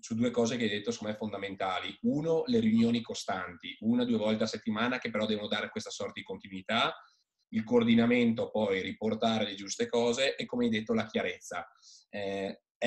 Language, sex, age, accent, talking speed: Italian, male, 20-39, native, 180 wpm